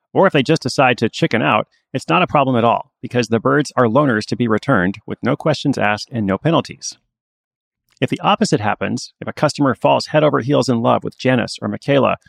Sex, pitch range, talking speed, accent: male, 110-145 Hz, 225 wpm, American